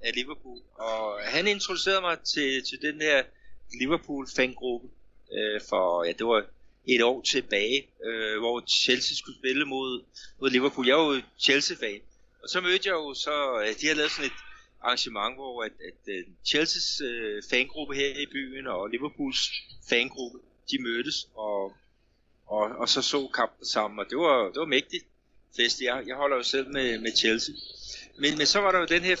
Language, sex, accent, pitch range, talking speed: Danish, male, native, 120-150 Hz, 185 wpm